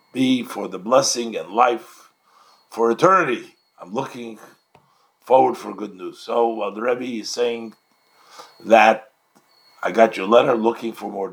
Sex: male